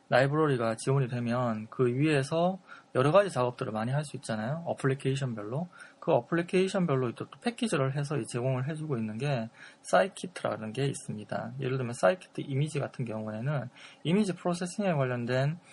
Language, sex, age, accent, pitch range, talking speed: English, male, 20-39, Korean, 120-165 Hz, 125 wpm